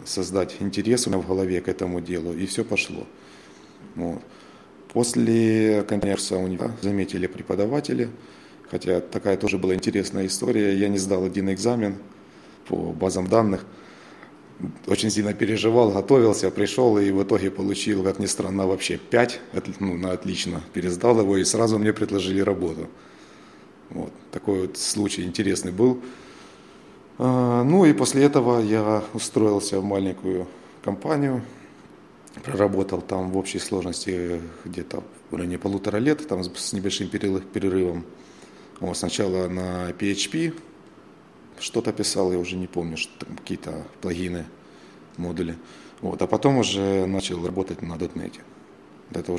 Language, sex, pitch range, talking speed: Russian, male, 90-105 Hz, 130 wpm